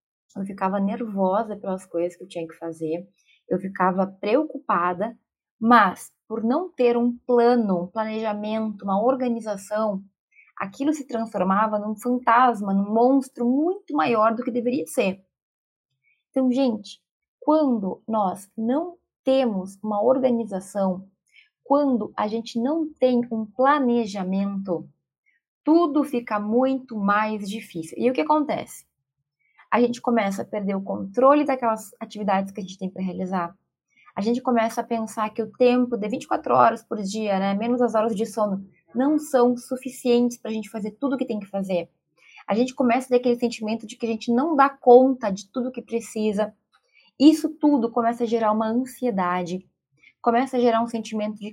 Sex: female